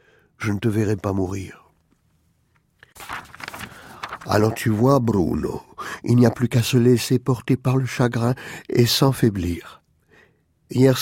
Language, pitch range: French, 115-135 Hz